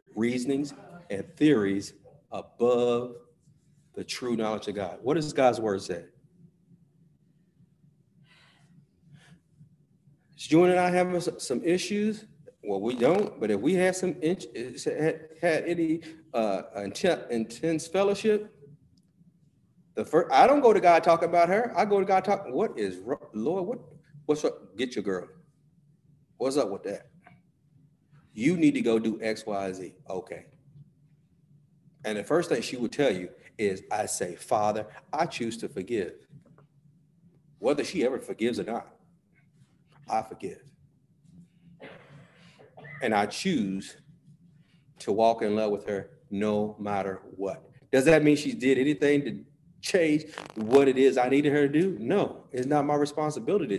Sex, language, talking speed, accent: male, English, 145 wpm, American